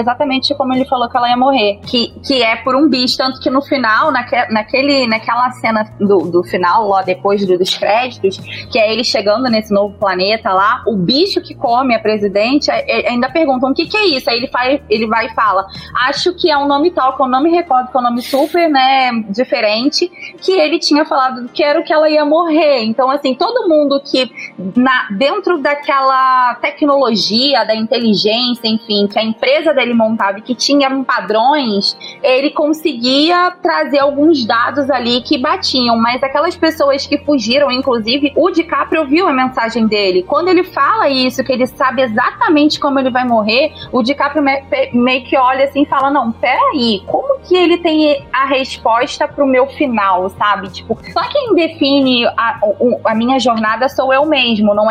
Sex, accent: female, Brazilian